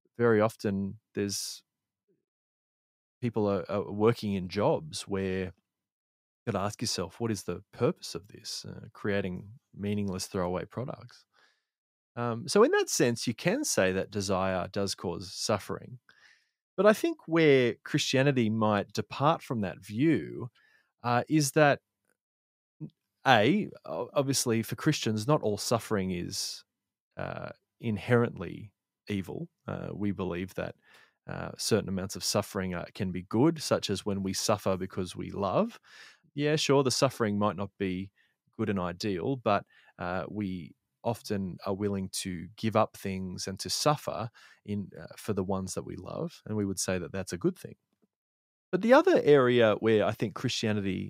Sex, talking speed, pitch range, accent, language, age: male, 155 wpm, 95-130 Hz, Australian, English, 30-49